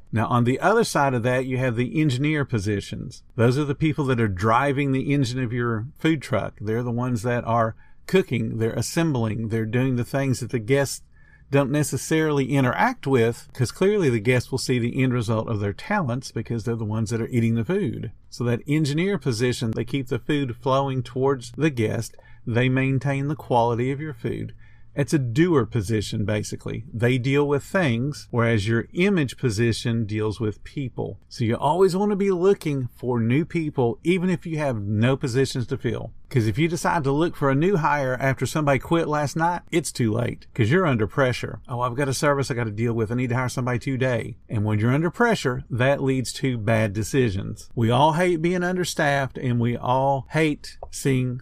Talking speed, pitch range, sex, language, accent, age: 205 wpm, 115-145 Hz, male, English, American, 50-69